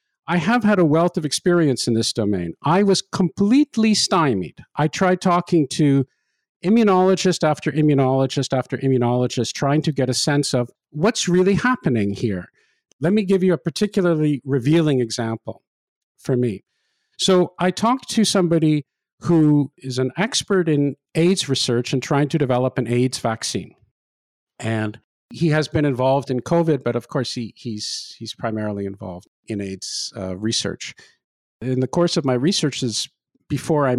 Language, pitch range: English, 120-170 Hz